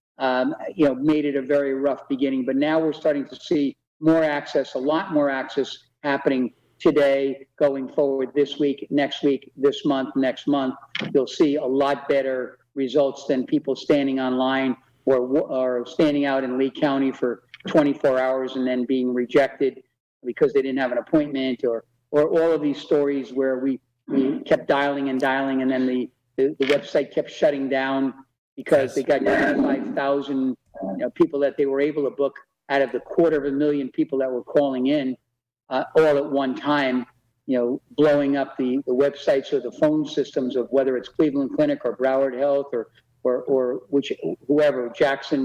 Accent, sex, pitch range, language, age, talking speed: American, male, 130-150 Hz, English, 50-69, 185 wpm